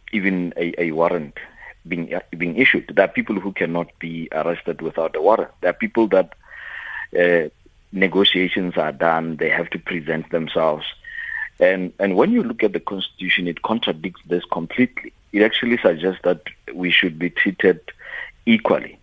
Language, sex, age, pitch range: English, male, 40-59, 85-110 Hz